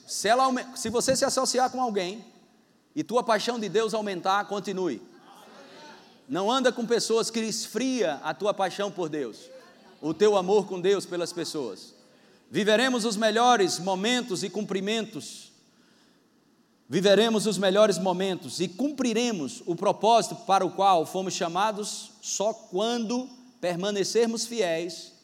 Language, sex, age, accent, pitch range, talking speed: Portuguese, male, 40-59, Brazilian, 185-230 Hz, 130 wpm